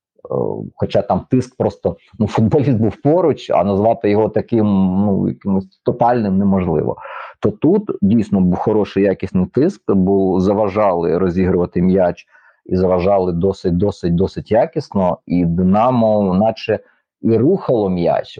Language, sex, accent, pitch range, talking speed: Ukrainian, male, native, 100-120 Hz, 120 wpm